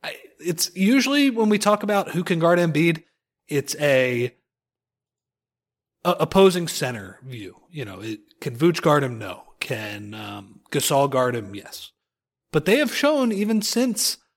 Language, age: English, 30-49